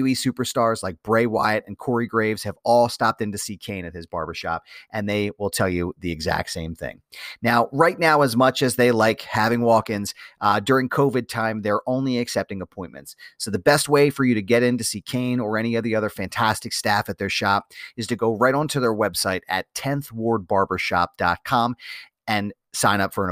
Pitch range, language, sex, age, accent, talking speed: 105-130 Hz, English, male, 30-49, American, 205 wpm